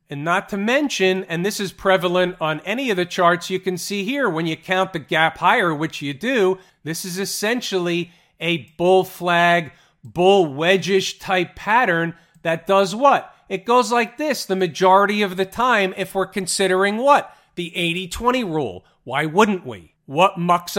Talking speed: 175 wpm